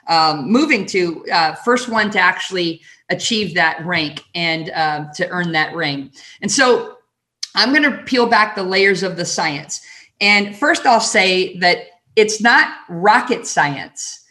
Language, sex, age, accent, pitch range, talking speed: English, female, 40-59, American, 185-230 Hz, 160 wpm